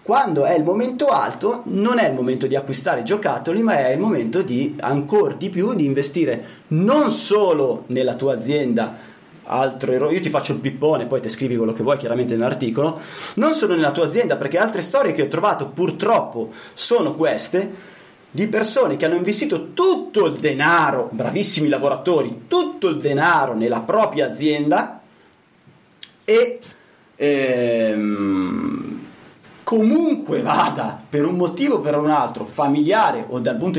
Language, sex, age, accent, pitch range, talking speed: Italian, male, 30-49, native, 130-205 Hz, 155 wpm